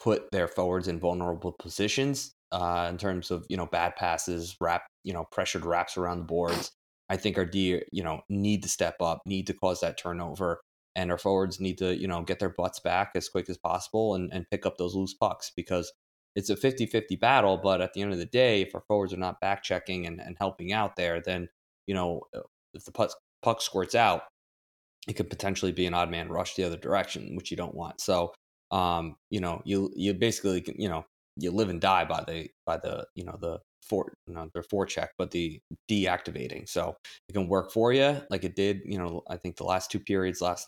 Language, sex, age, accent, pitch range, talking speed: English, male, 20-39, American, 85-100 Hz, 225 wpm